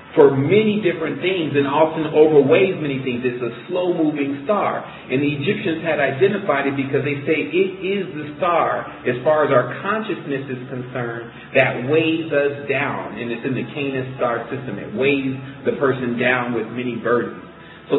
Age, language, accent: 40-59, English, American